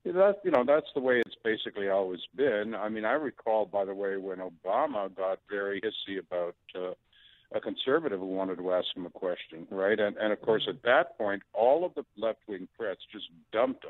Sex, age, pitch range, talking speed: male, 60-79, 95-120 Hz, 205 wpm